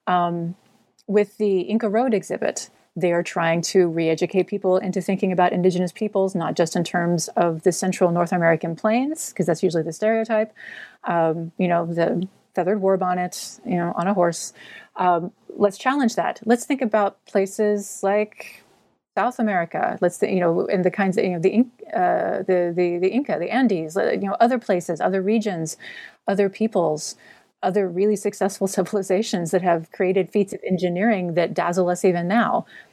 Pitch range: 175-215 Hz